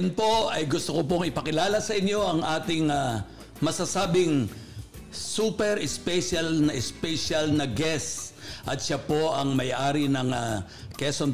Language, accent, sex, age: Filipino, native, male, 50-69